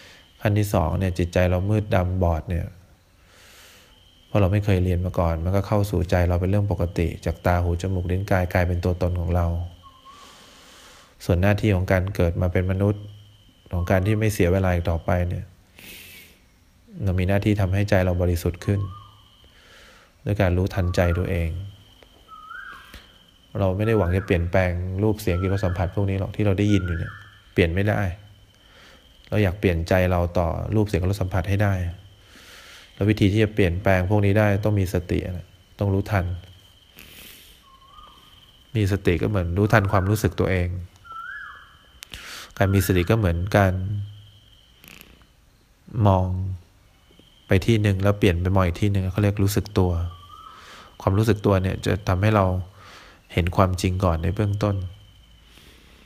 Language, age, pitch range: English, 20-39, 90-100 Hz